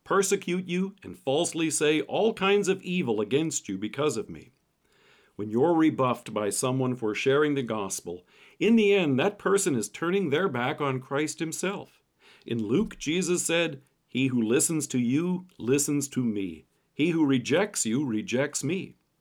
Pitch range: 125-180 Hz